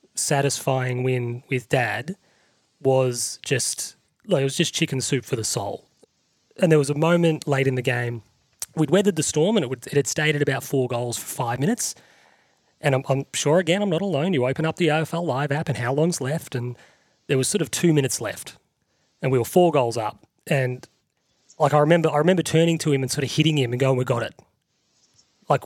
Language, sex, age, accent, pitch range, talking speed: English, male, 30-49, Australian, 130-160 Hz, 220 wpm